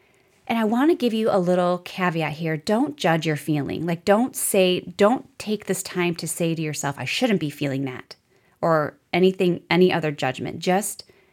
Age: 20-39